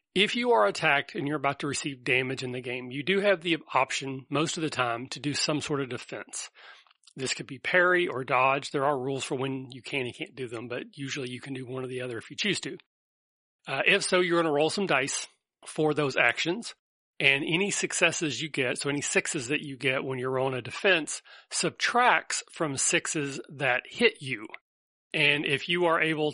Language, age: English, 40-59